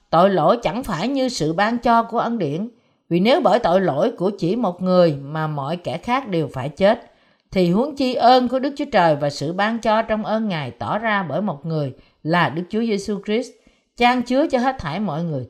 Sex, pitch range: female, 155-230 Hz